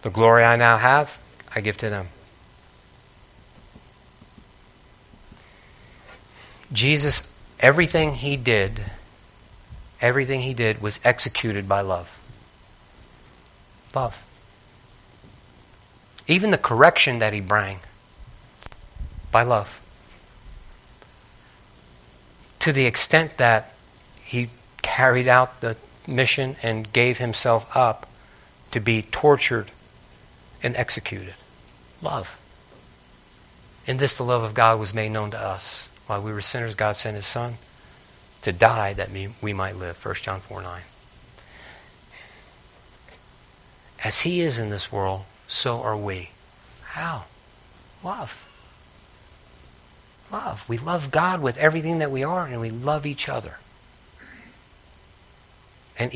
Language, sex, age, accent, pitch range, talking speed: English, male, 50-69, American, 100-125 Hz, 110 wpm